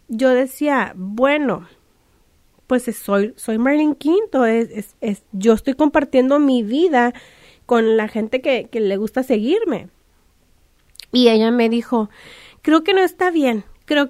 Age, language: 30-49, Spanish